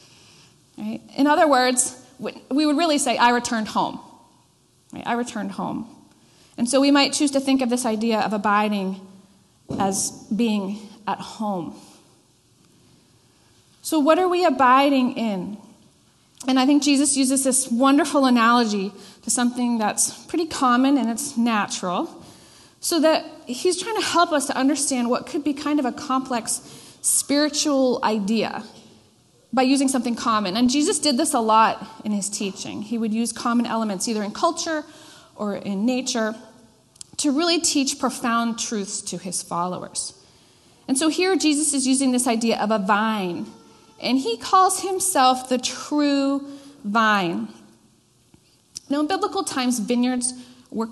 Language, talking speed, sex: English, 145 wpm, female